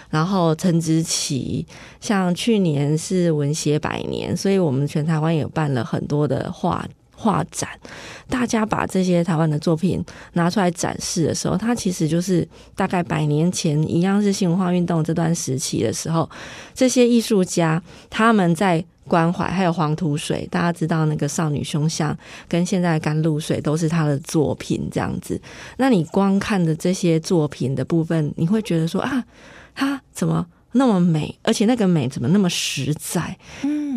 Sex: female